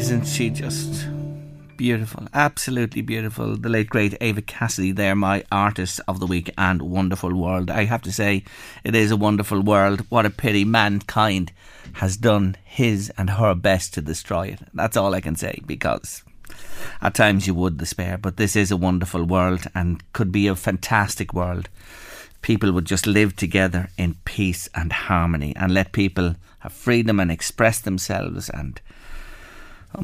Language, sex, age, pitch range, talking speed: English, male, 30-49, 95-120 Hz, 170 wpm